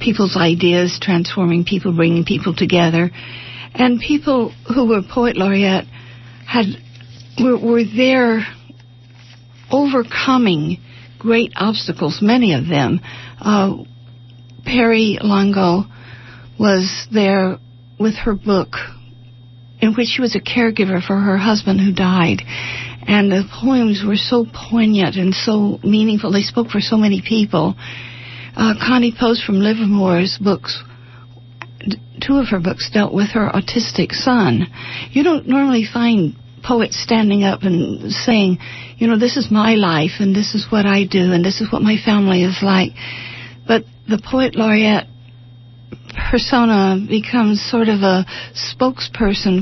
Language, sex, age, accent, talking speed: English, female, 60-79, American, 135 wpm